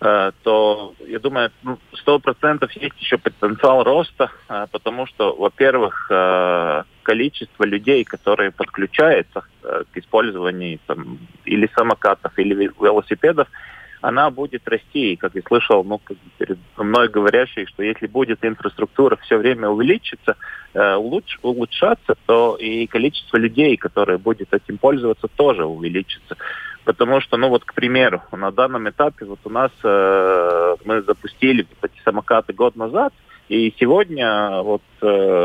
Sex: male